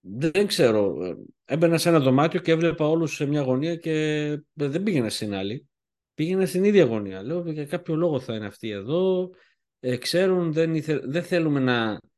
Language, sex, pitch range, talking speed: Greek, male, 130-195 Hz, 175 wpm